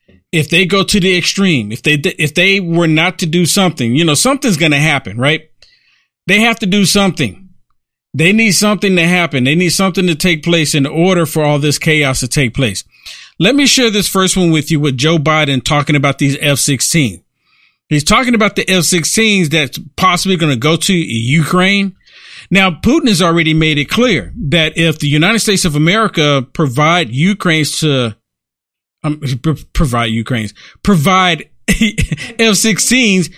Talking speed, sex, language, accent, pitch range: 175 wpm, male, English, American, 145-185 Hz